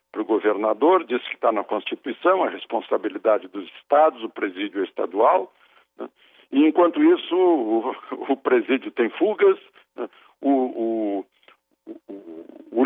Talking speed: 135 wpm